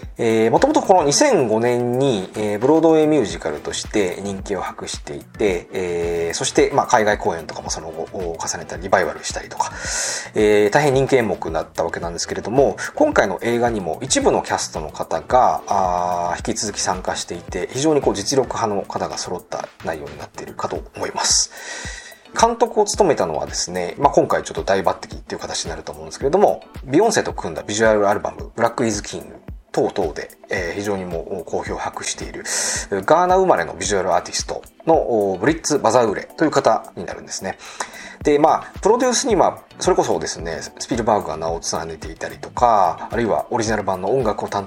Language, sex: Japanese, male